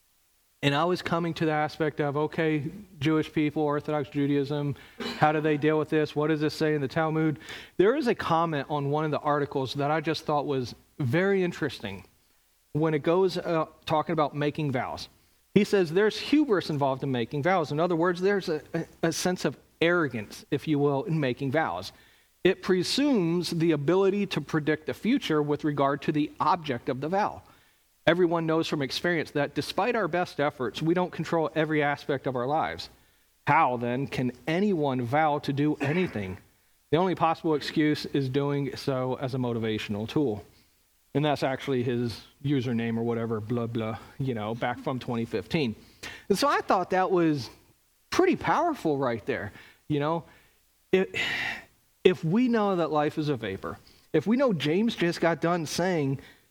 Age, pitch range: 40-59, 135-170 Hz